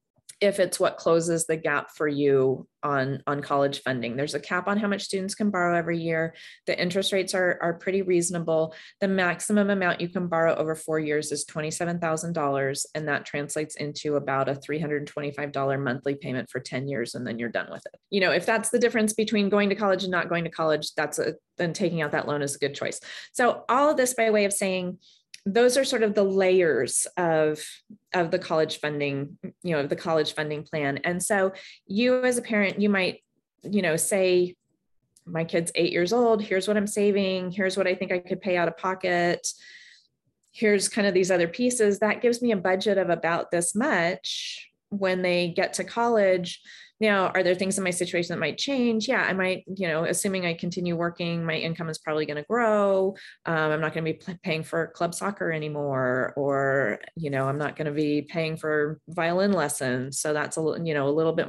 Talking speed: 225 wpm